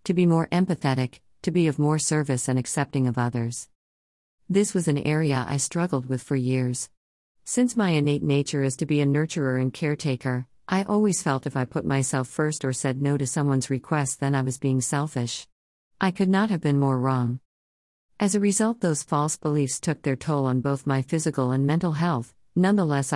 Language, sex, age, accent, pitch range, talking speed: English, female, 50-69, American, 130-160 Hz, 195 wpm